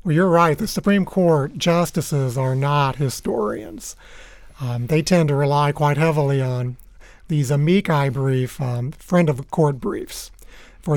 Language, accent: English, American